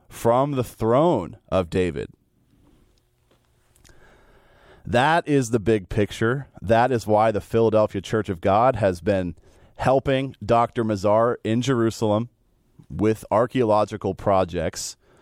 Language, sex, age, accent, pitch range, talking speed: English, male, 30-49, American, 95-120 Hz, 110 wpm